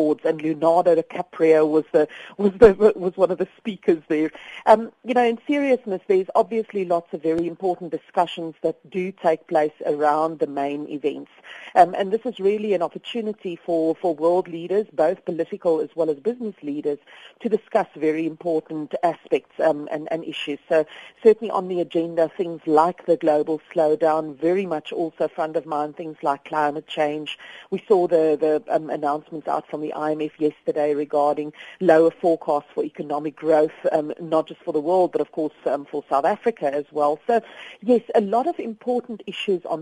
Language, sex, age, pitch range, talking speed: English, female, 50-69, 155-195 Hz, 180 wpm